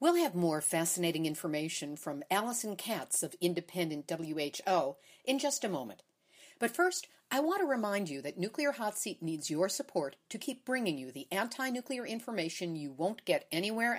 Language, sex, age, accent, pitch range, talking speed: English, female, 50-69, American, 170-265 Hz, 170 wpm